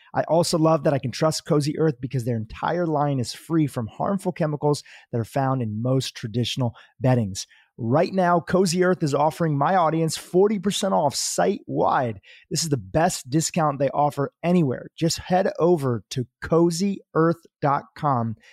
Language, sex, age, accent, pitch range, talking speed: English, male, 30-49, American, 130-170 Hz, 160 wpm